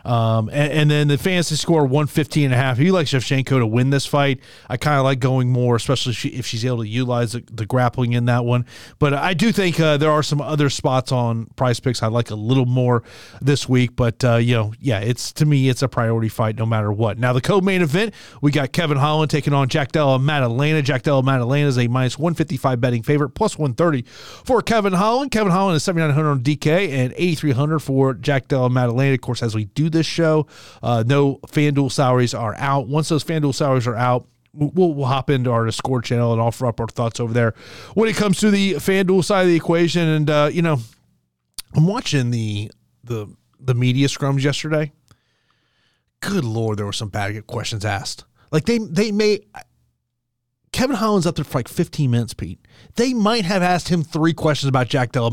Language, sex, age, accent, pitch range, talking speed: English, male, 30-49, American, 120-155 Hz, 215 wpm